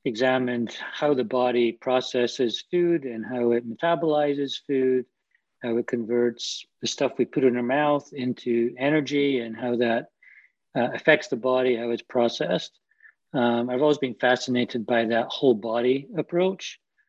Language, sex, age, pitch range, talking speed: English, male, 50-69, 120-140 Hz, 150 wpm